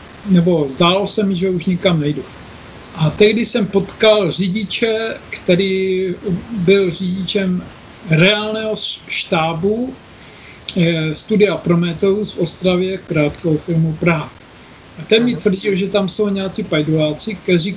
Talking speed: 120 wpm